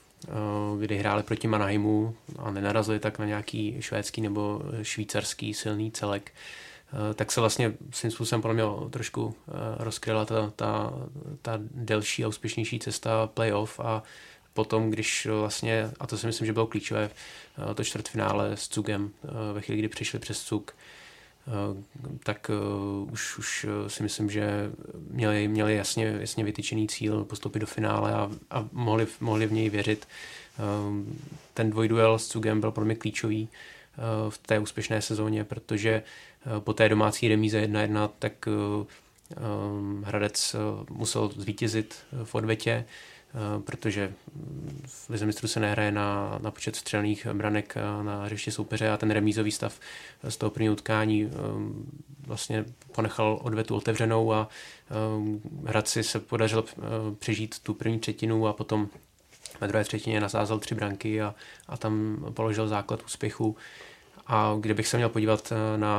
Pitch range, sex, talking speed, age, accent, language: 105-110 Hz, male, 140 wpm, 20-39, native, Czech